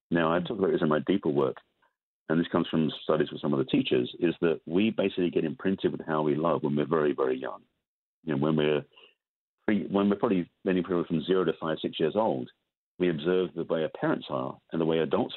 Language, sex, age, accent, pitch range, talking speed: English, male, 50-69, British, 75-90 Hz, 240 wpm